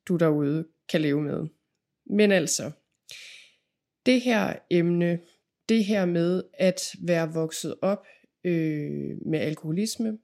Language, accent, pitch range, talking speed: Danish, native, 165-200 Hz, 110 wpm